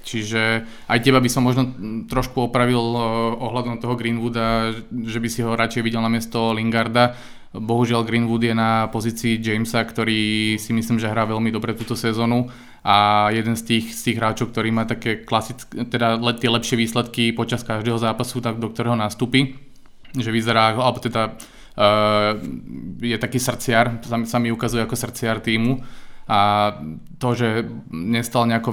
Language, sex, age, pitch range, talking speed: Slovak, male, 20-39, 110-120 Hz, 150 wpm